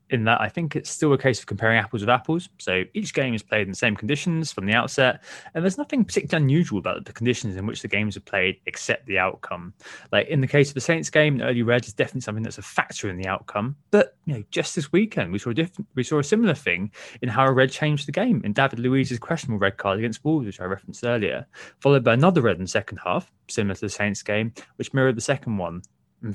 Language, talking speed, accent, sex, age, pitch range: English, 260 wpm, British, male, 20-39, 100-135 Hz